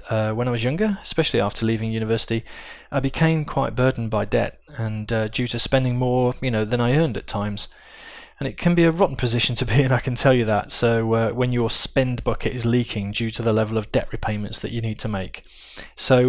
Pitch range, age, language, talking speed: 110-135 Hz, 20-39, English, 235 wpm